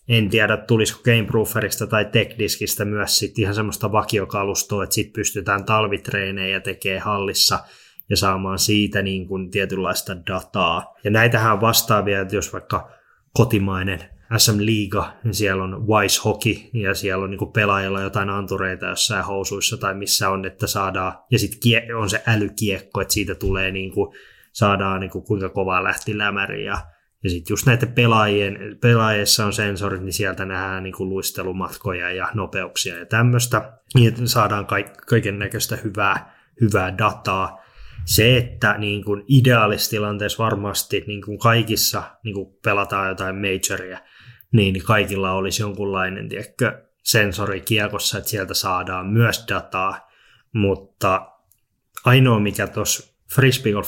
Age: 20-39